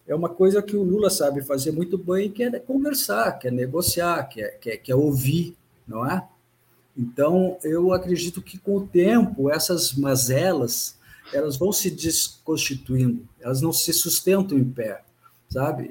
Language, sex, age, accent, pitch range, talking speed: Portuguese, male, 50-69, Brazilian, 125-175 Hz, 170 wpm